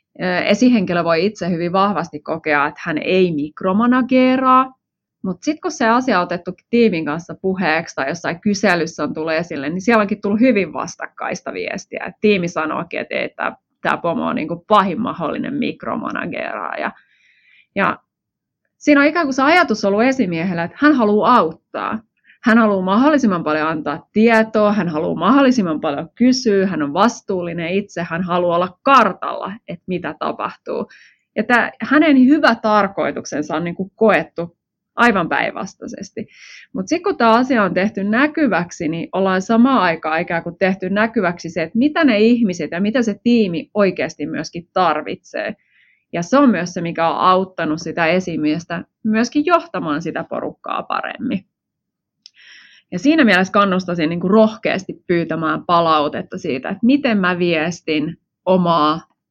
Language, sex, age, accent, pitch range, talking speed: Finnish, female, 20-39, native, 170-235 Hz, 150 wpm